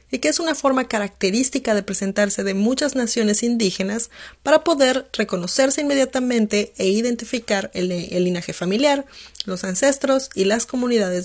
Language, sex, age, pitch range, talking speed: English, female, 30-49, 190-240 Hz, 145 wpm